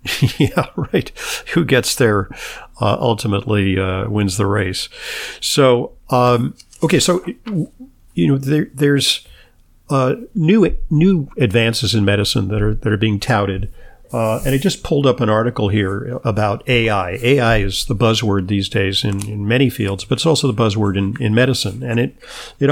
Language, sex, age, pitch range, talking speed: English, male, 50-69, 105-130 Hz, 165 wpm